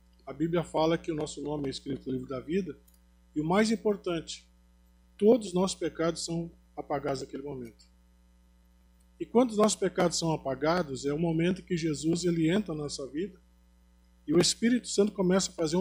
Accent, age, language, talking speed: Brazilian, 20-39, Portuguese, 185 wpm